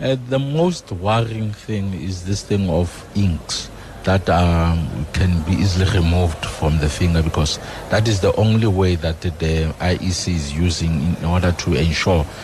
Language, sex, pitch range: English, male, 85-100 Hz